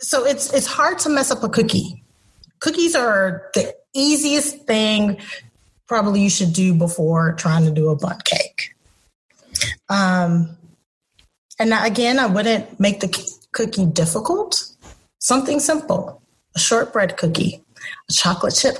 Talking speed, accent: 135 wpm, American